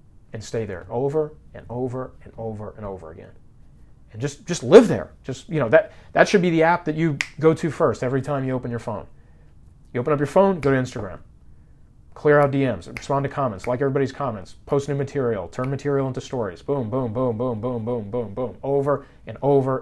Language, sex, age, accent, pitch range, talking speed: English, male, 30-49, American, 115-155 Hz, 220 wpm